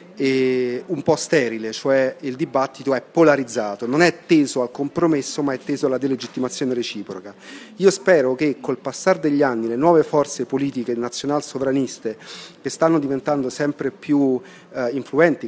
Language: Italian